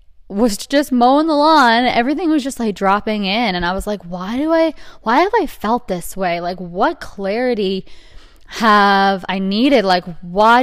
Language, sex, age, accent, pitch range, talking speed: English, female, 20-39, American, 180-235 Hz, 180 wpm